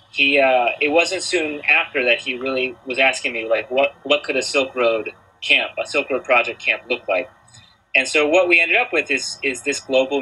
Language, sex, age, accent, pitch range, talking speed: English, male, 30-49, American, 125-155 Hz, 225 wpm